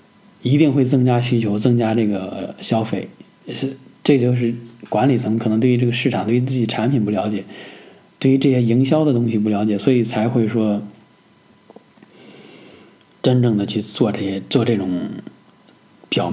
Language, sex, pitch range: Chinese, male, 110-125 Hz